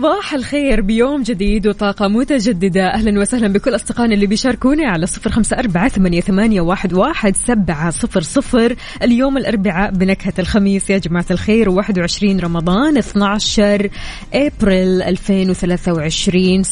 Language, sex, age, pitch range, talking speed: Arabic, female, 20-39, 180-210 Hz, 120 wpm